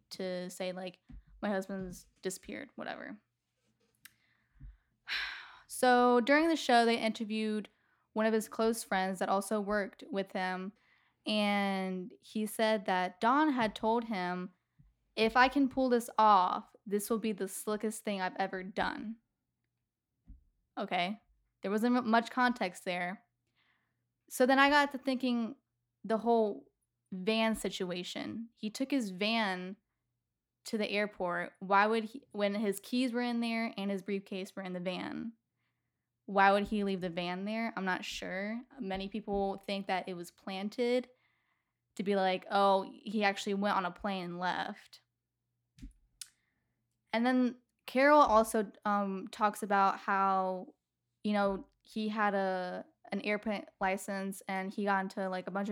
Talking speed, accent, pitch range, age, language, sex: 150 wpm, American, 190-225 Hz, 10-29, English, female